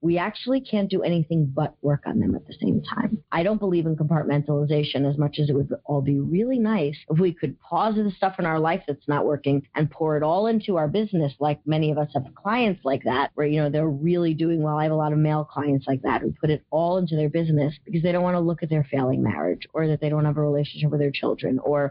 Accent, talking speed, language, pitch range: American, 270 wpm, English, 140-170 Hz